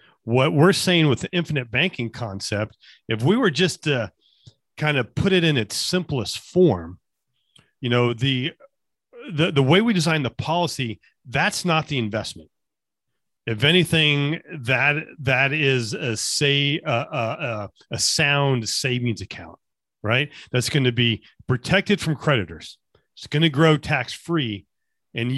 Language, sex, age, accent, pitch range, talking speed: English, male, 40-59, American, 125-165 Hz, 150 wpm